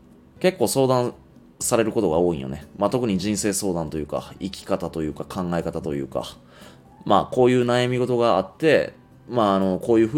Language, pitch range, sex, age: Japanese, 85-115 Hz, male, 20-39